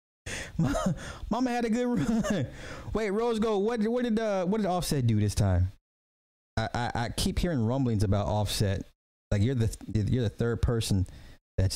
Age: 30-49